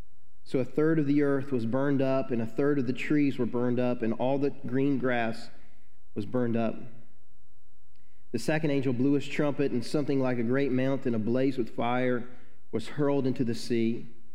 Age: 40-59